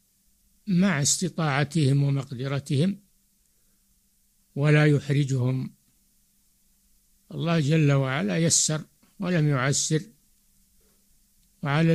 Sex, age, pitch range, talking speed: male, 60-79, 140-185 Hz, 60 wpm